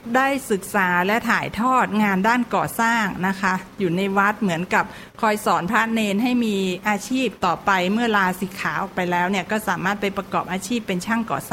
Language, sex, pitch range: Thai, female, 190-230 Hz